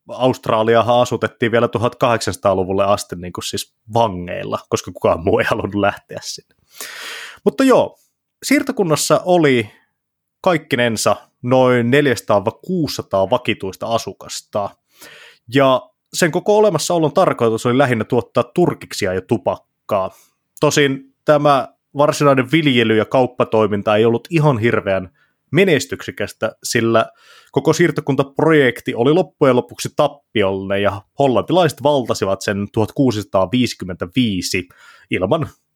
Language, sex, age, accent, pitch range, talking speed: Finnish, male, 30-49, native, 105-145 Hz, 100 wpm